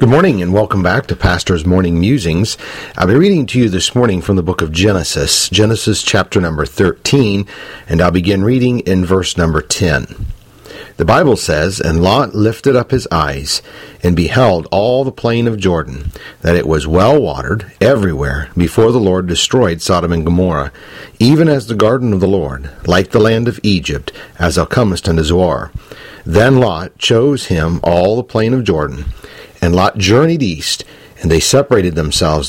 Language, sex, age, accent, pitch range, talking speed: English, male, 50-69, American, 85-110 Hz, 175 wpm